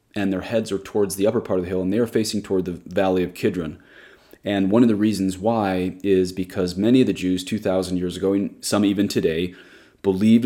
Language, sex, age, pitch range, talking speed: English, male, 30-49, 95-110 Hz, 230 wpm